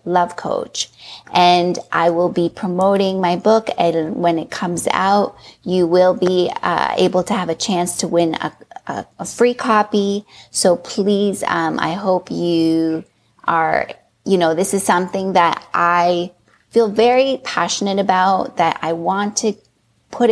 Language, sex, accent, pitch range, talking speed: English, female, American, 170-200 Hz, 155 wpm